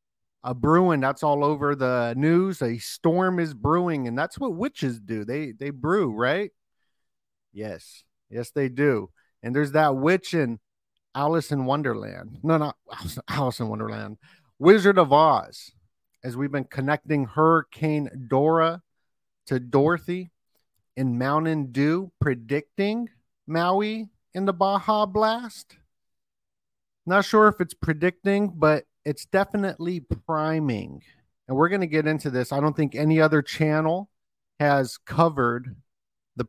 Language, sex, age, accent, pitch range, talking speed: English, male, 50-69, American, 125-160 Hz, 135 wpm